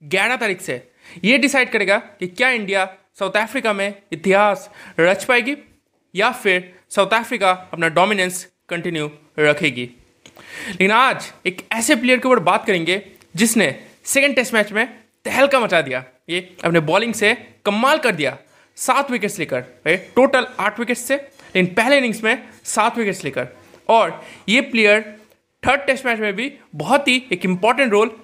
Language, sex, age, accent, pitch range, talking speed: Hindi, male, 20-39, native, 160-230 Hz, 155 wpm